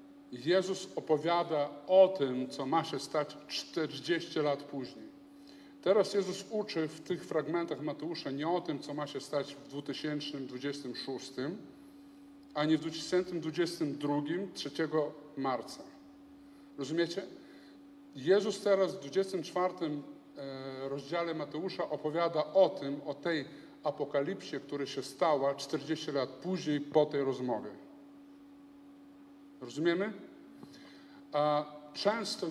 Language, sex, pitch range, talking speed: Polish, male, 145-205 Hz, 105 wpm